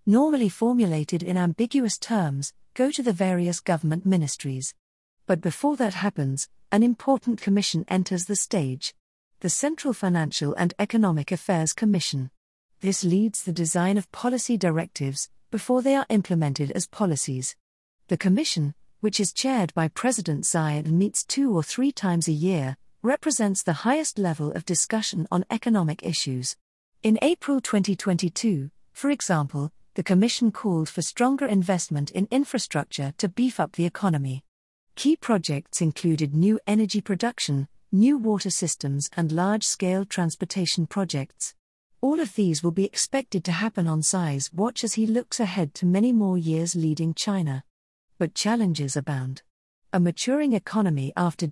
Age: 40-59